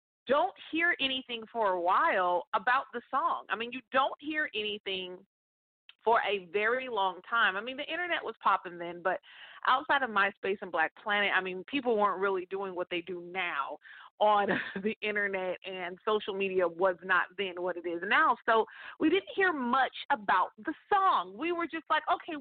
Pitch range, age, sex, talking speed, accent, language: 190-265 Hz, 40-59, female, 185 wpm, American, English